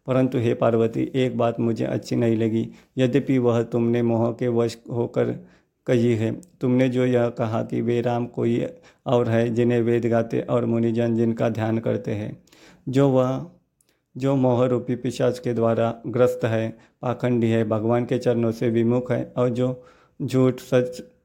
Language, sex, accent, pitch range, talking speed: Hindi, male, native, 115-125 Hz, 165 wpm